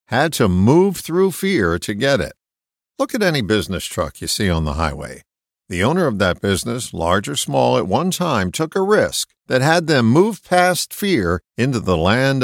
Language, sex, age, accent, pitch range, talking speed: English, male, 50-69, American, 90-145 Hz, 200 wpm